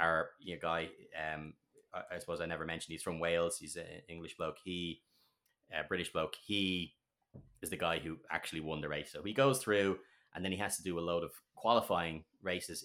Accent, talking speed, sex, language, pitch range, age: Irish, 195 wpm, male, English, 85-100 Hz, 30-49